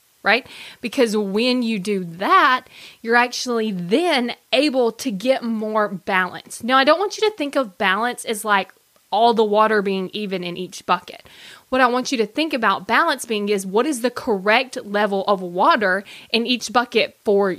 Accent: American